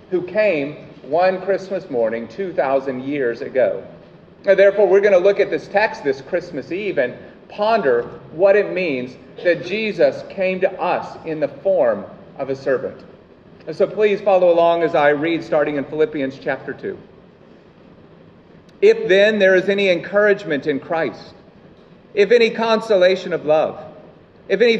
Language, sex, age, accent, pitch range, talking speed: English, male, 40-59, American, 155-195 Hz, 150 wpm